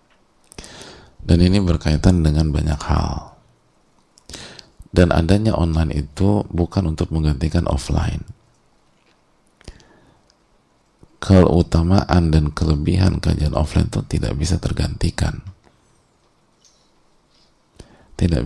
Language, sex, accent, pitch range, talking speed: English, male, Indonesian, 80-95 Hz, 80 wpm